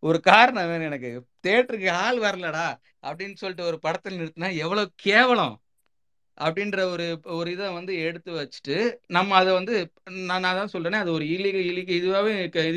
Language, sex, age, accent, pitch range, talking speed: Tamil, male, 30-49, native, 150-185 Hz, 150 wpm